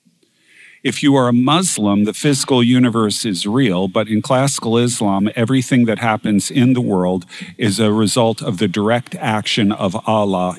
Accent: American